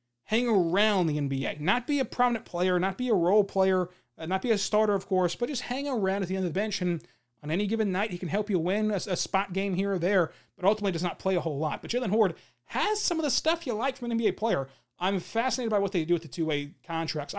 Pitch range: 160-210 Hz